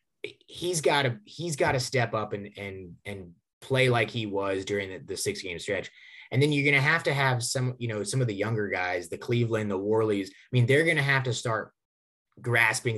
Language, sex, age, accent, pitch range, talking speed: English, male, 20-39, American, 110-135 Hz, 230 wpm